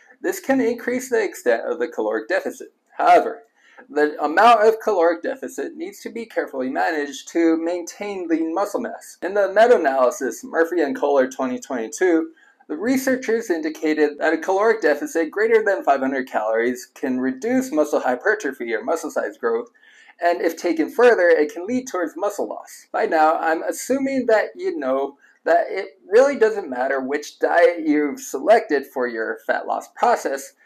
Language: English